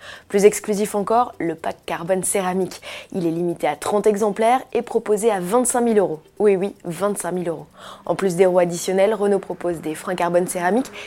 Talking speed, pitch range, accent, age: 190 wpm, 175-220 Hz, French, 20-39